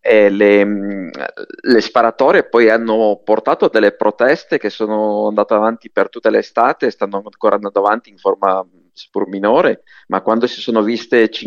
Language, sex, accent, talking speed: Italian, male, native, 155 wpm